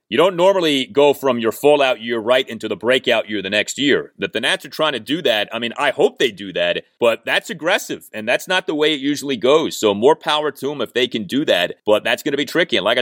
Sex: male